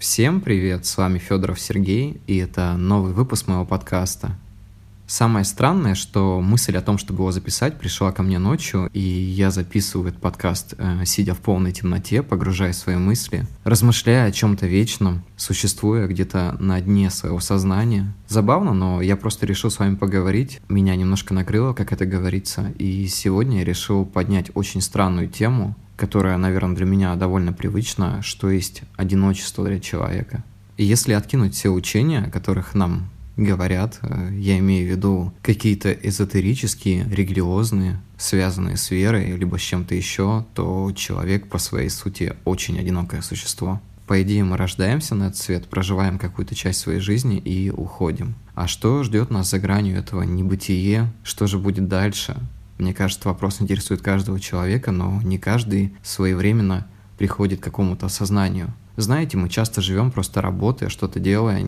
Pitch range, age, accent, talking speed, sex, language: 95-105 Hz, 20-39, native, 155 wpm, male, Russian